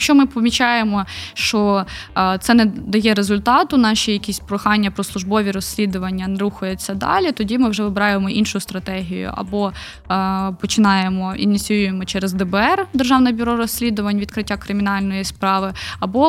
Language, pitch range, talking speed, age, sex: Ukrainian, 195-240 Hz, 130 wpm, 20-39, female